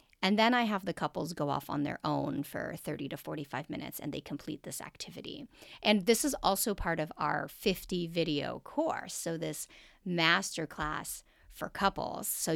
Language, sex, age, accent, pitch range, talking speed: English, female, 40-59, American, 160-220 Hz, 175 wpm